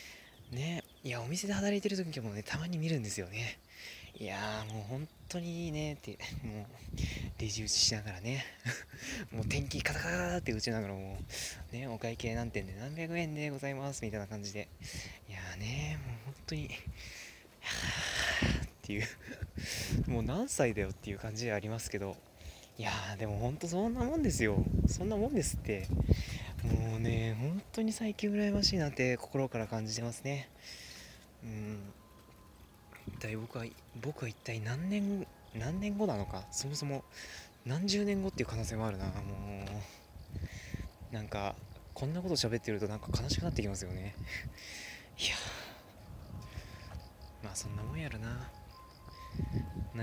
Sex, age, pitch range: male, 20-39, 100-135 Hz